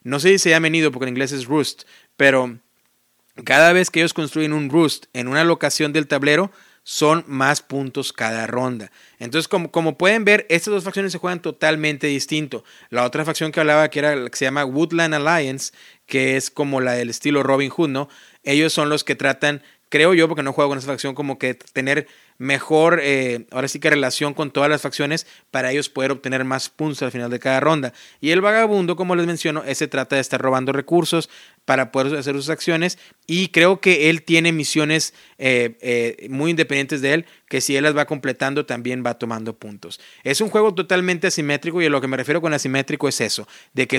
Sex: male